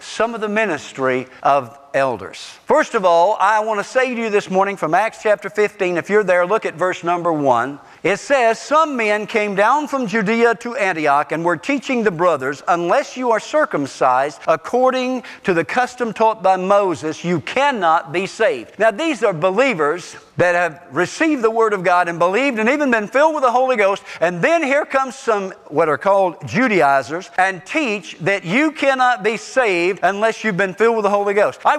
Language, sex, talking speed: English, male, 200 wpm